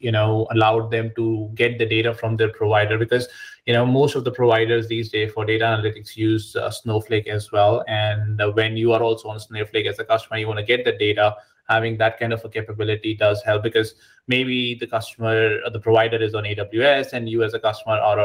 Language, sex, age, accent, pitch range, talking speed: English, male, 20-39, Indian, 105-115 Hz, 225 wpm